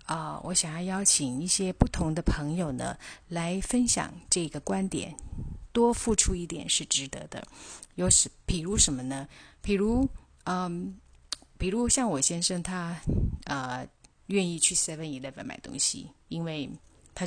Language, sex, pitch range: Chinese, female, 150-180 Hz